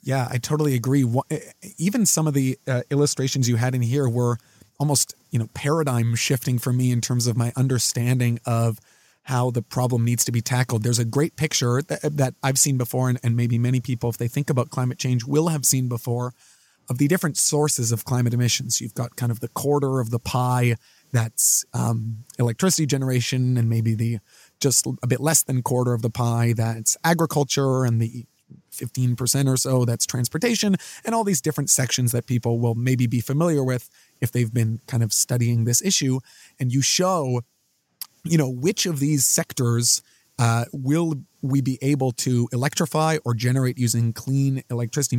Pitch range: 120-140 Hz